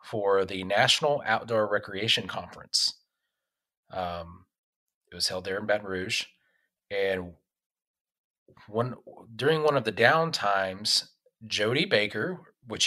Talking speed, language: 110 wpm, English